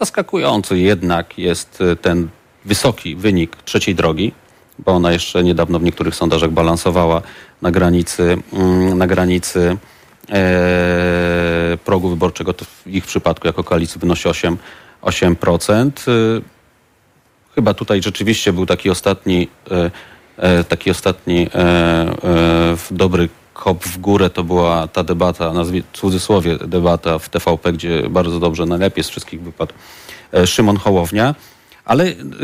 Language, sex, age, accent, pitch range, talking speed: Polish, male, 30-49, native, 85-105 Hz, 110 wpm